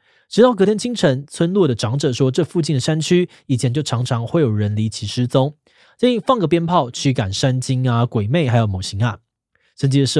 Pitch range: 120-170 Hz